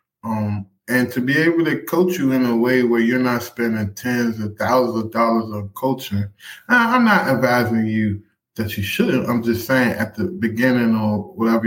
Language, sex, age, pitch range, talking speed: English, male, 20-39, 115-140 Hz, 190 wpm